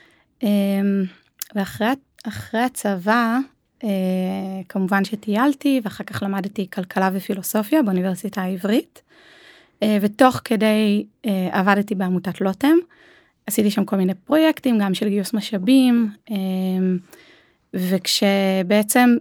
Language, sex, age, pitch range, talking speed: Hebrew, female, 20-39, 190-245 Hz, 80 wpm